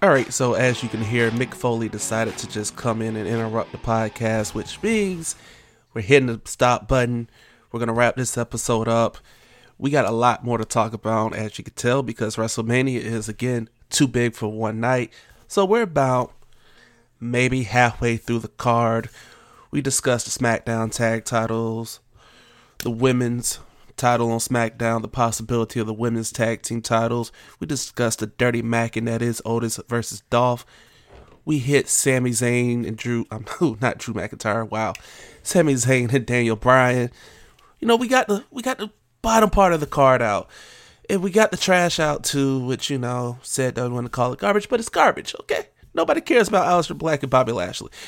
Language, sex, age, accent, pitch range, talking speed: English, male, 20-39, American, 115-140 Hz, 185 wpm